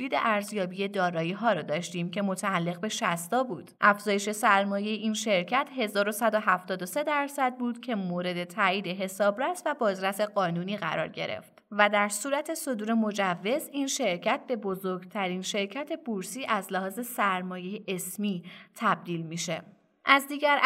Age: 20-39